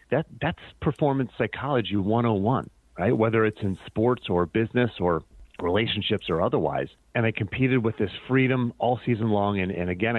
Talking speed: 165 wpm